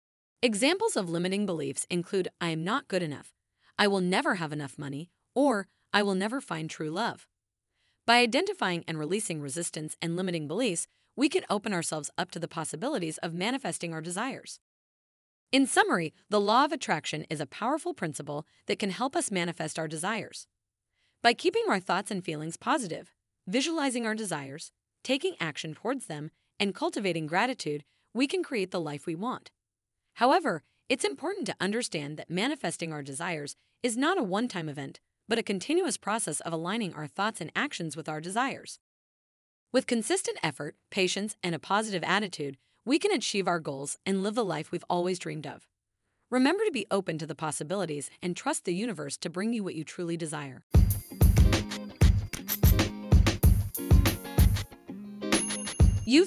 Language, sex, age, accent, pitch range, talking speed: English, female, 30-49, American, 150-220 Hz, 160 wpm